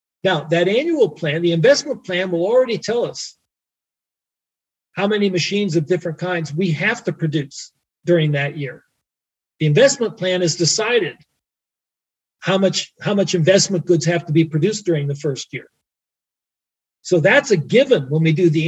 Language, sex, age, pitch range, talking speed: German, male, 40-59, 155-200 Hz, 160 wpm